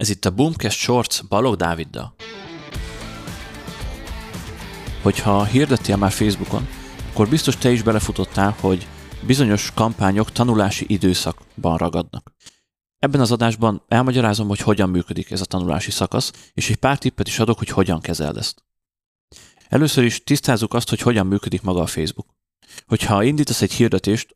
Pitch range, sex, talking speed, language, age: 95-115 Hz, male, 140 wpm, Hungarian, 30-49